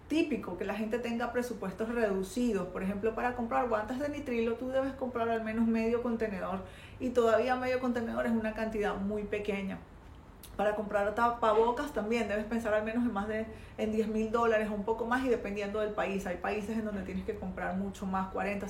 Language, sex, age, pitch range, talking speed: Spanish, female, 30-49, 205-245 Hz, 200 wpm